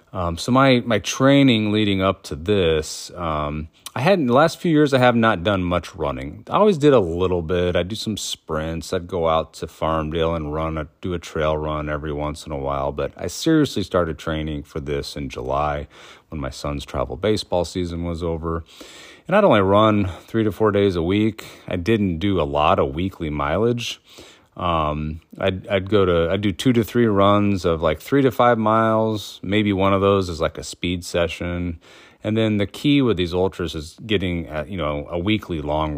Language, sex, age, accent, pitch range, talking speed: English, male, 30-49, American, 80-105 Hz, 220 wpm